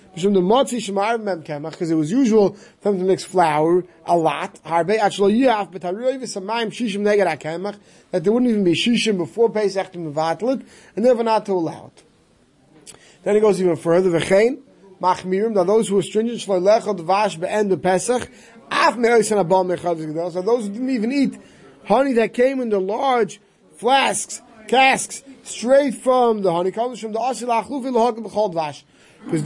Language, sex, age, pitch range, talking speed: English, male, 30-49, 180-230 Hz, 110 wpm